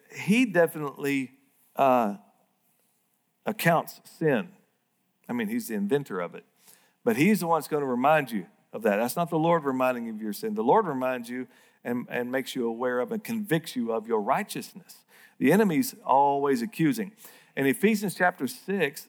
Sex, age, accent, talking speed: male, 50-69, American, 175 wpm